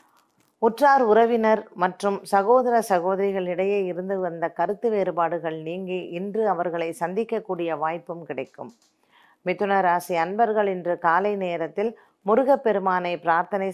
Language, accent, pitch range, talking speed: Tamil, native, 165-200 Hz, 100 wpm